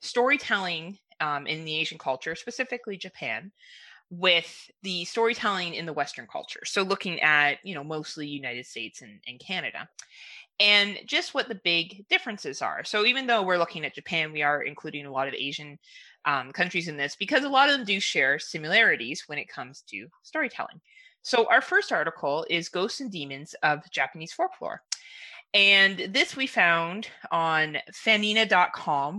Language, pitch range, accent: English, 155-230 Hz, American